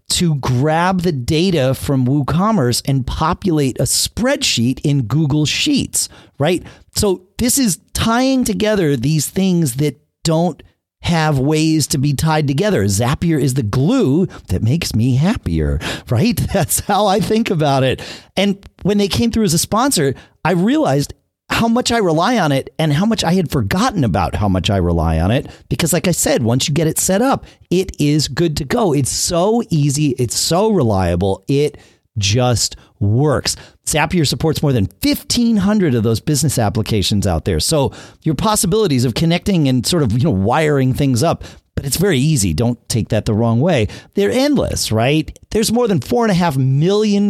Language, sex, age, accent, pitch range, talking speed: English, male, 40-59, American, 120-180 Hz, 180 wpm